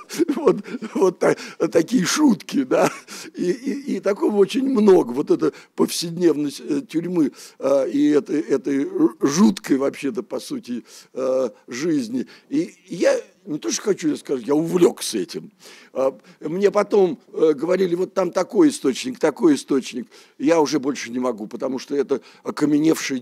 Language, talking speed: Russian, 135 wpm